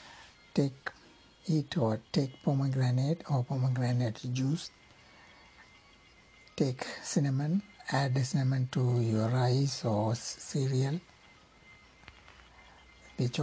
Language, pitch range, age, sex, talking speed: Tamil, 125-145 Hz, 60-79, male, 85 wpm